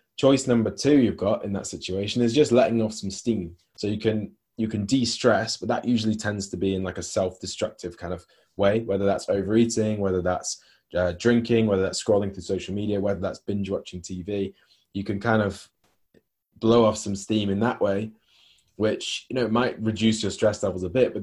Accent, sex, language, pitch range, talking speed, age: British, male, English, 95-115 Hz, 205 wpm, 20-39